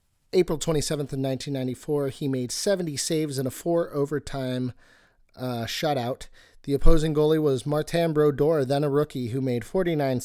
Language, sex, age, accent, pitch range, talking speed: English, male, 40-59, American, 125-160 Hz, 145 wpm